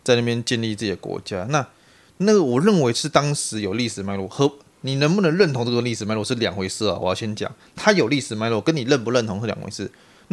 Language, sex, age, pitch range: Chinese, male, 20-39, 115-150 Hz